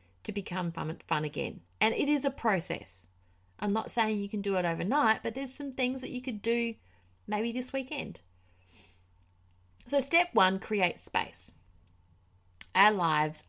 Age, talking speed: 30-49, 160 wpm